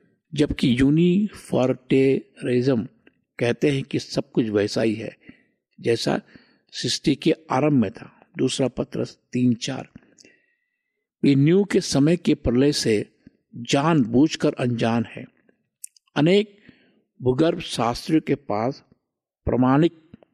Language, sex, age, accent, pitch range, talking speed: Hindi, male, 60-79, native, 130-180 Hz, 105 wpm